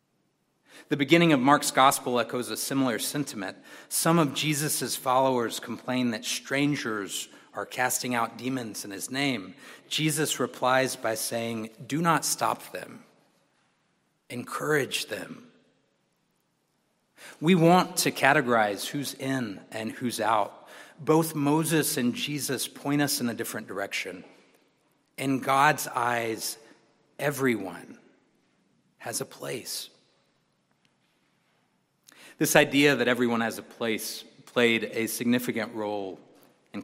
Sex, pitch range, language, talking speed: male, 115-145 Hz, English, 115 wpm